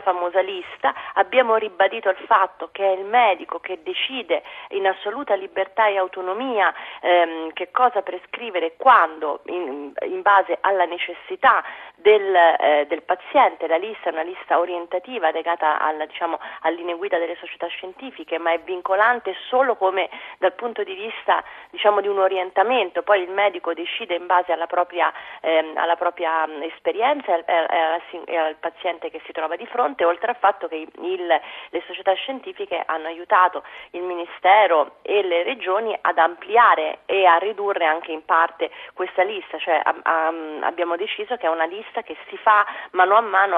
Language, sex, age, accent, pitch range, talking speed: Italian, female, 30-49, native, 165-205 Hz, 160 wpm